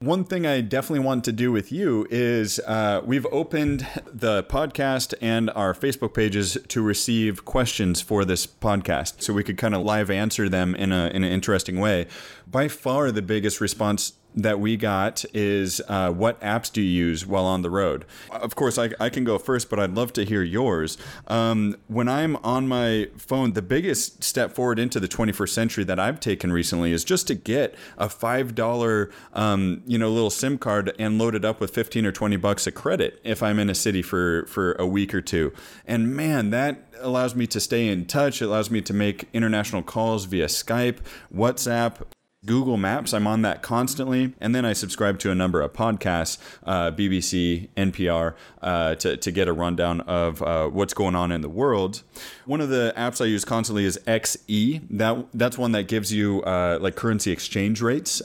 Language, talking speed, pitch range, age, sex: English, 200 wpm, 95-120 Hz, 30-49, male